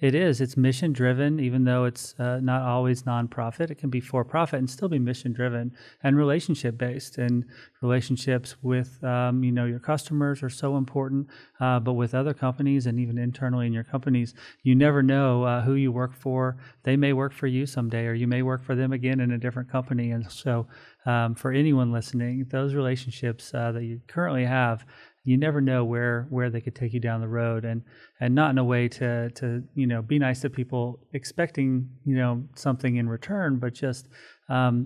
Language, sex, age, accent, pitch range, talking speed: English, male, 40-59, American, 120-135 Hz, 205 wpm